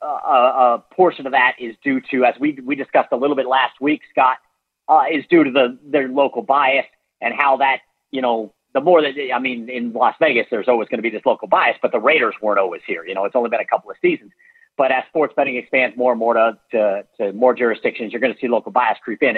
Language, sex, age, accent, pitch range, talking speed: English, male, 40-59, American, 120-150 Hz, 260 wpm